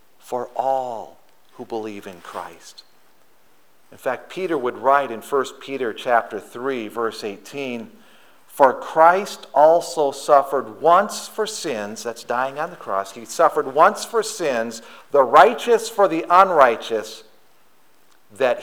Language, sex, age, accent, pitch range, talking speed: English, male, 50-69, American, 100-130 Hz, 130 wpm